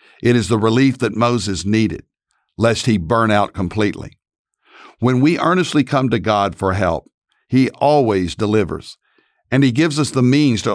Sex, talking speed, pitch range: male, 165 wpm, 105-130 Hz